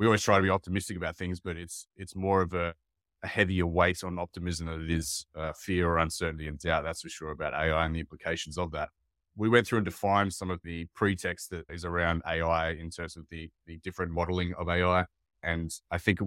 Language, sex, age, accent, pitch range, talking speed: English, male, 30-49, Australian, 80-95 Hz, 235 wpm